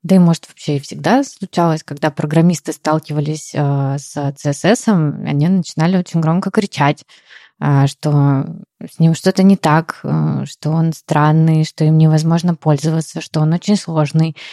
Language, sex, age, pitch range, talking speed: Russian, female, 20-39, 165-205 Hz, 155 wpm